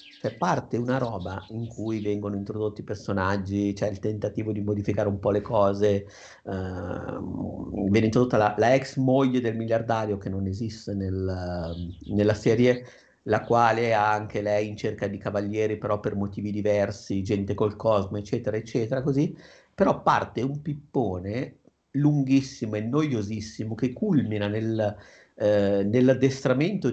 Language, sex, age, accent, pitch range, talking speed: Italian, male, 50-69, native, 105-135 Hz, 130 wpm